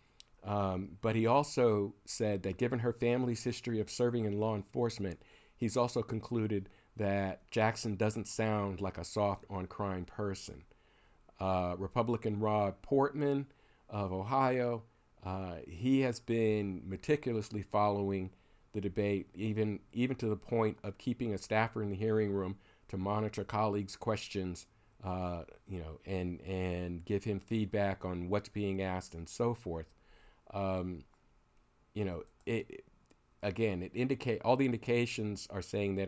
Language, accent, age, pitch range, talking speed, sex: English, American, 50-69, 95-115 Hz, 145 wpm, male